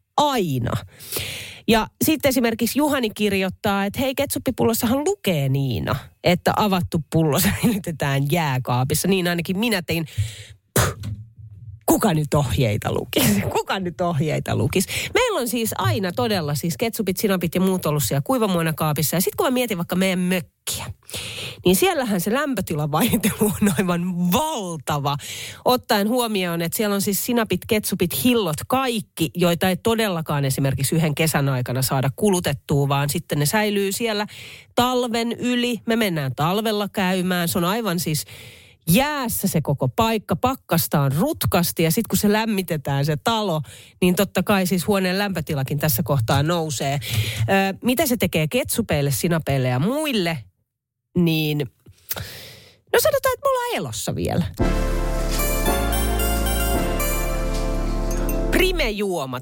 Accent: native